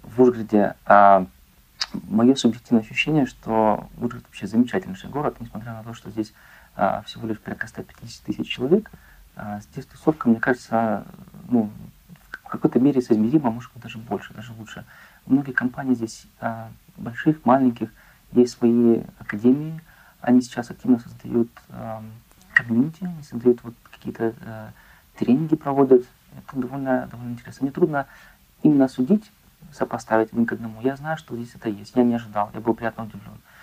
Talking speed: 140 wpm